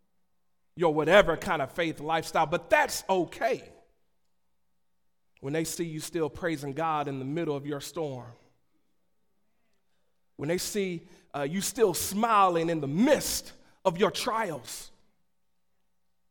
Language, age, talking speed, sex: English, 40-59, 130 wpm, male